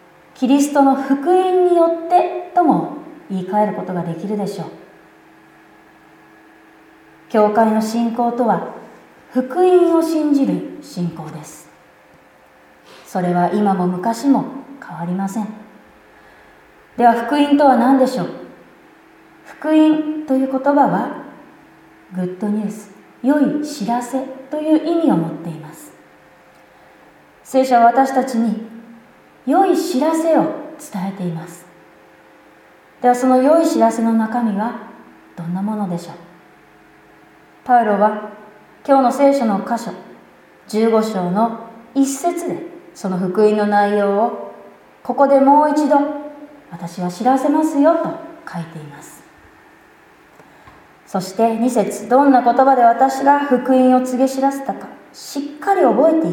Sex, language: female, Japanese